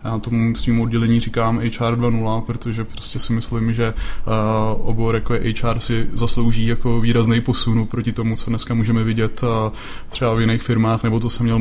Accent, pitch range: native, 110-115 Hz